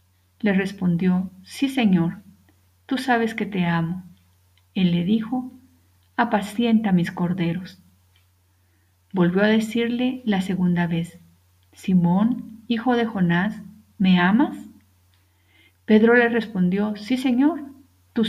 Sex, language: female, Spanish